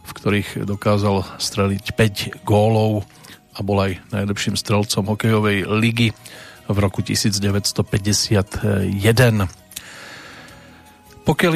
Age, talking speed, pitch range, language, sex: 40-59, 90 wpm, 100-125 Hz, Slovak, male